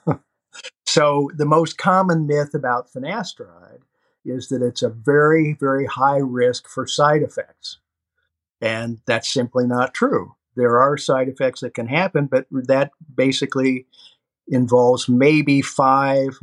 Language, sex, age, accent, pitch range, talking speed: English, male, 50-69, American, 125-150 Hz, 130 wpm